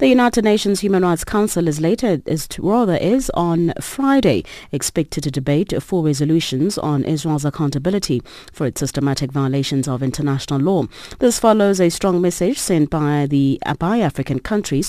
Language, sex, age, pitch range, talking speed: English, female, 40-59, 135-190 Hz, 155 wpm